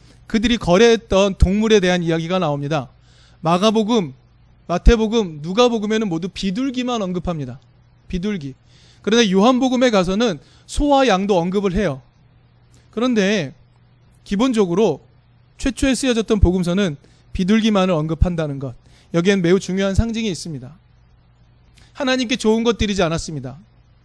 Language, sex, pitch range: Korean, male, 135-225 Hz